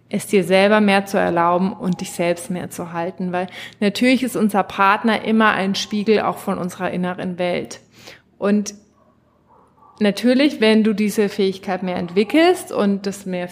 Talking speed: 160 wpm